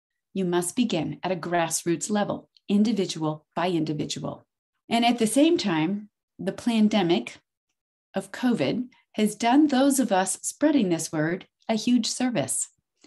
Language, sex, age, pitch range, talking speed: English, female, 30-49, 175-230 Hz, 140 wpm